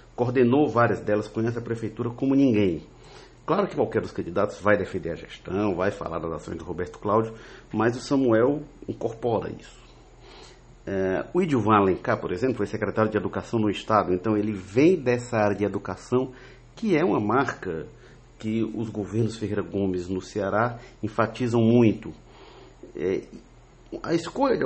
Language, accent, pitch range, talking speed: Portuguese, Brazilian, 105-125 Hz, 155 wpm